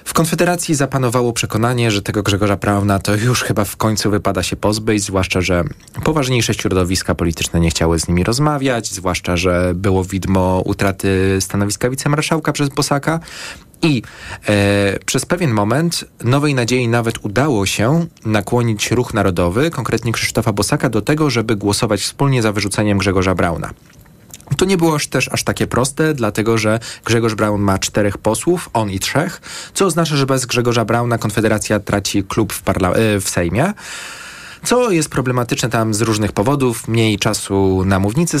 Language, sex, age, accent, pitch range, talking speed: Polish, male, 20-39, native, 100-140 Hz, 155 wpm